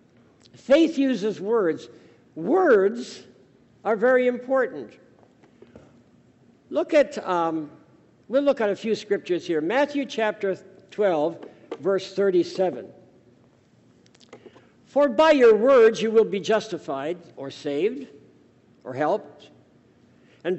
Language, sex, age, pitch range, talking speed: Dutch, male, 60-79, 190-245 Hz, 100 wpm